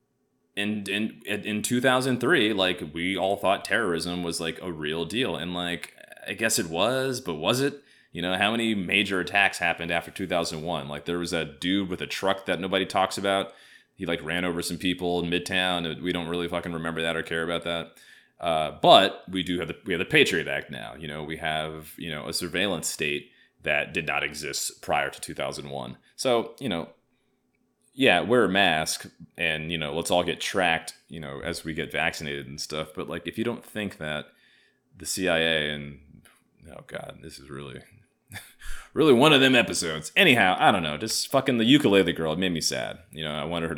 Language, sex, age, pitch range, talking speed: English, male, 30-49, 80-95 Hz, 205 wpm